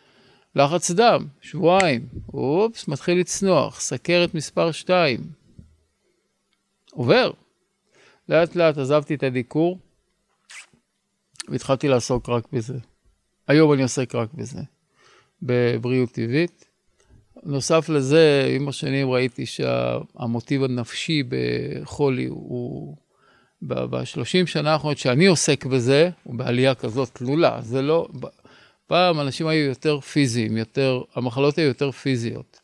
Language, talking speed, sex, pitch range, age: Hebrew, 105 wpm, male, 125-155 Hz, 50-69